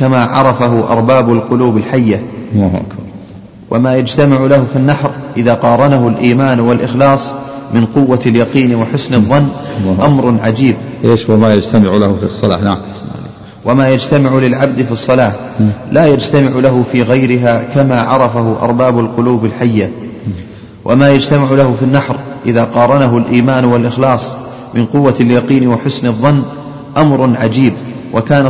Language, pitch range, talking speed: Arabic, 115-130 Hz, 125 wpm